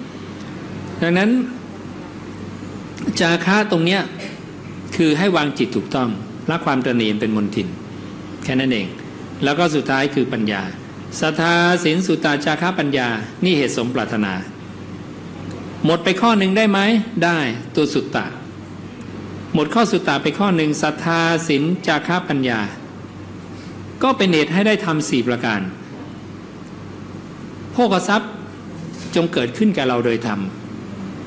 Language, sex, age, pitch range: English, male, 60-79, 120-185 Hz